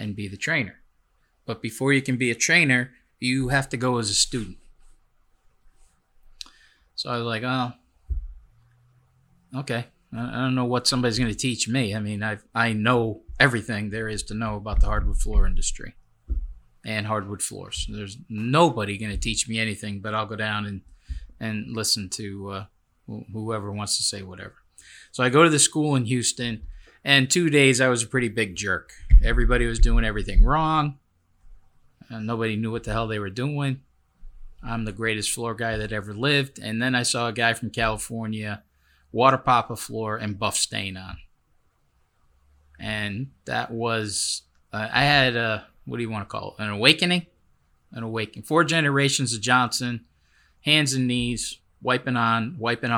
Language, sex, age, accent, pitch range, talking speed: English, male, 20-39, American, 100-125 Hz, 175 wpm